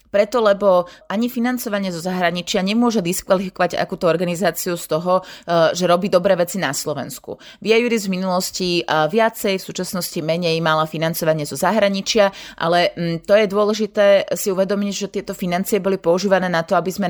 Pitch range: 170-205 Hz